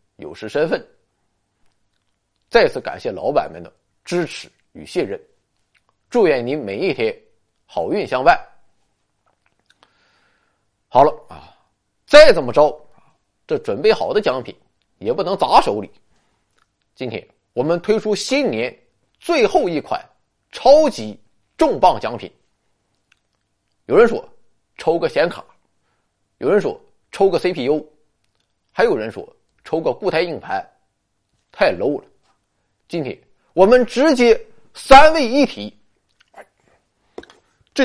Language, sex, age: Chinese, male, 30-49